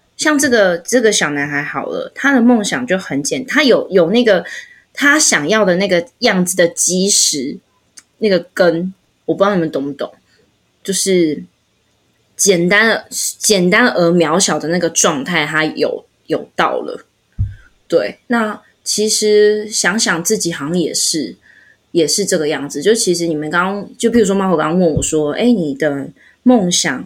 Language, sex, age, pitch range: Chinese, female, 20-39, 165-220 Hz